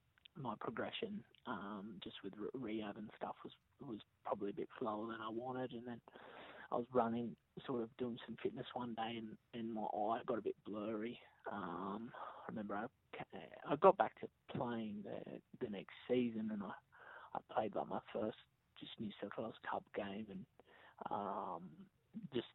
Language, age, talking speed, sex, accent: English, 30-49, 175 wpm, male, Australian